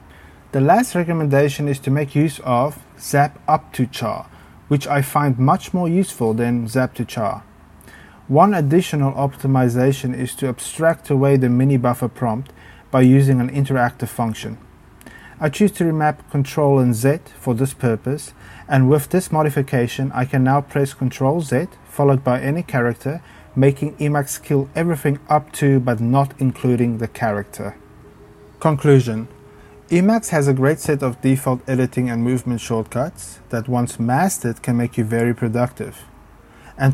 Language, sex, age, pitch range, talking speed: English, male, 30-49, 120-145 Hz, 155 wpm